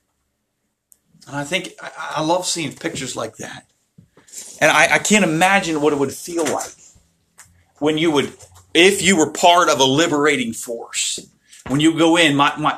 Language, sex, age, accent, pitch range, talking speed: English, male, 40-59, American, 135-180 Hz, 170 wpm